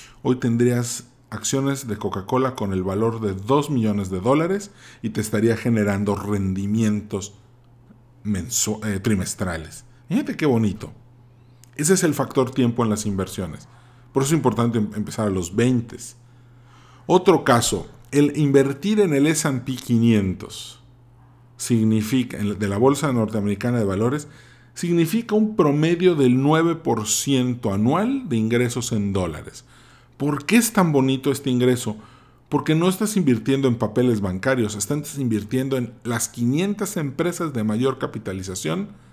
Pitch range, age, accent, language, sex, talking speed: 105-135 Hz, 40-59, Mexican, Spanish, male, 135 wpm